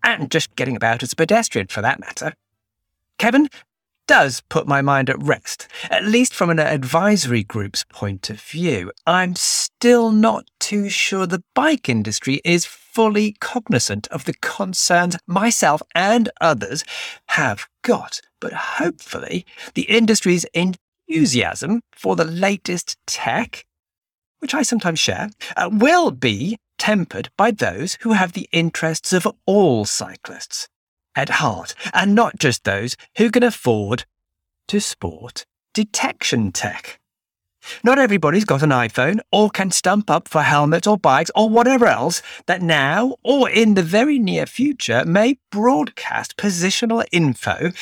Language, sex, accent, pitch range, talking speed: English, male, British, 140-220 Hz, 140 wpm